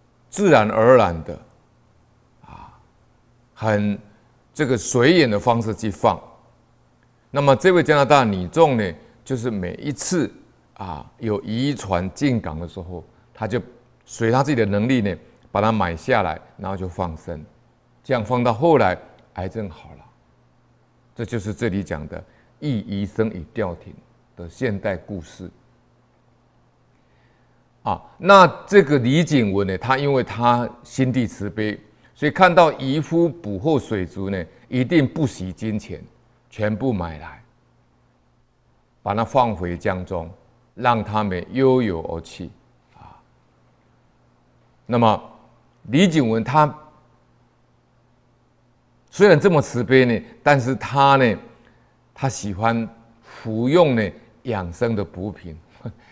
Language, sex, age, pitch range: Chinese, male, 60-79, 100-130 Hz